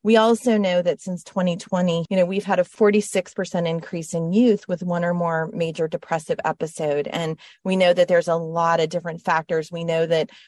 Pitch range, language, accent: 165-185 Hz, English, American